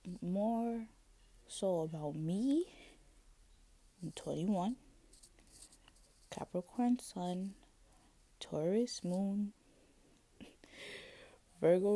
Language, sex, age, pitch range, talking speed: English, female, 20-39, 145-200 Hz, 60 wpm